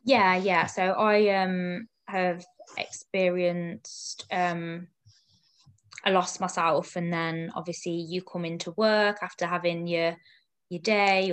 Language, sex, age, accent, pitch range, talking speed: English, female, 20-39, British, 170-195 Hz, 120 wpm